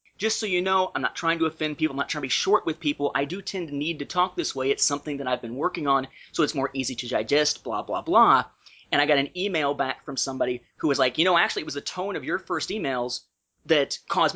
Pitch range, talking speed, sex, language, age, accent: 135-180 Hz, 280 wpm, male, English, 30-49, American